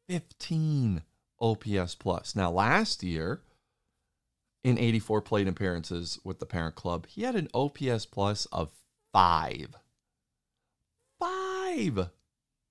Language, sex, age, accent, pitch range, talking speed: English, male, 40-59, American, 90-115 Hz, 105 wpm